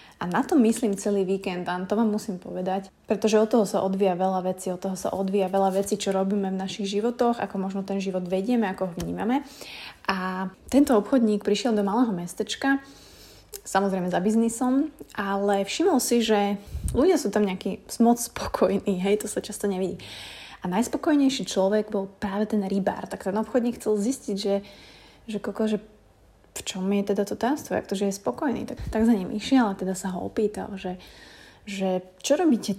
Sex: female